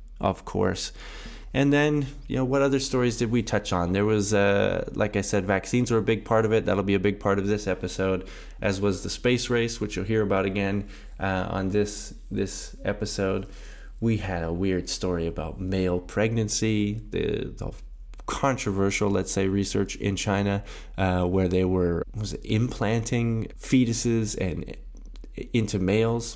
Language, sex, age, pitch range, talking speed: English, male, 20-39, 90-110 Hz, 175 wpm